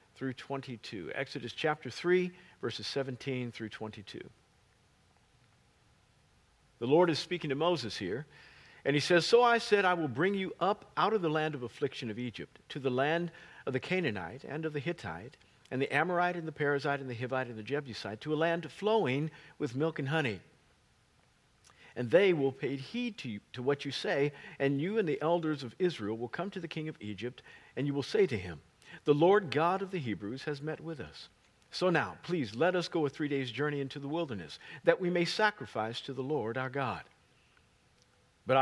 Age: 50-69